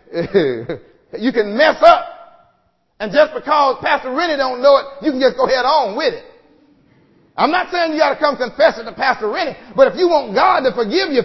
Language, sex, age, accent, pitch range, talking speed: English, male, 40-59, American, 235-320 Hz, 215 wpm